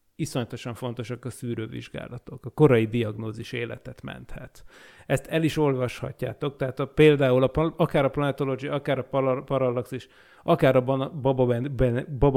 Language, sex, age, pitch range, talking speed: Hungarian, male, 30-49, 120-135 Hz, 115 wpm